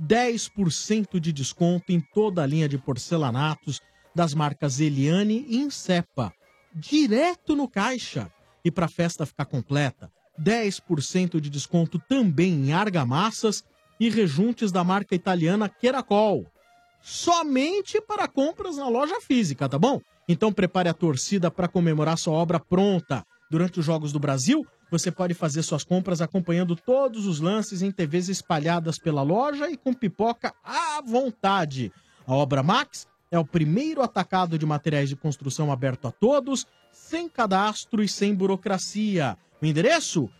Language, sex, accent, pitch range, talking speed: Portuguese, male, Brazilian, 160-230 Hz, 145 wpm